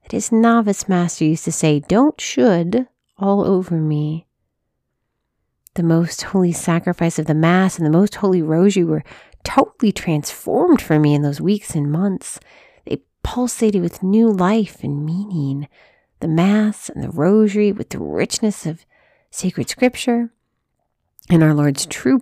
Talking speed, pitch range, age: 150 wpm, 160-220 Hz, 40-59